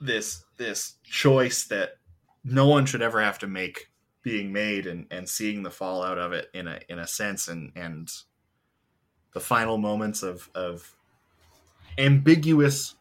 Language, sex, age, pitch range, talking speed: English, male, 20-39, 90-125 Hz, 150 wpm